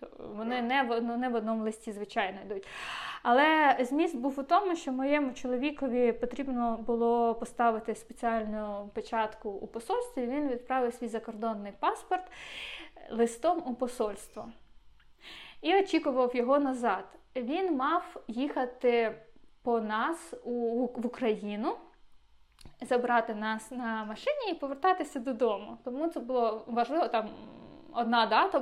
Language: Ukrainian